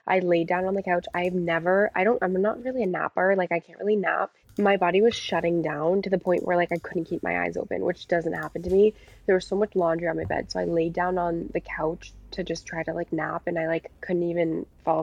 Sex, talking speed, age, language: female, 270 wpm, 20-39, English